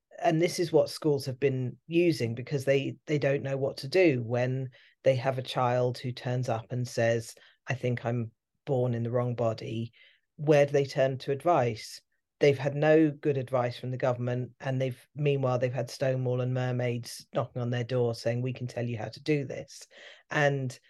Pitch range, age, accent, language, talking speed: 125-145 Hz, 40-59, British, English, 200 wpm